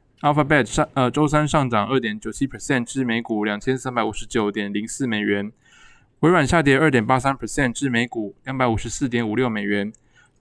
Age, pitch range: 20-39, 115-145 Hz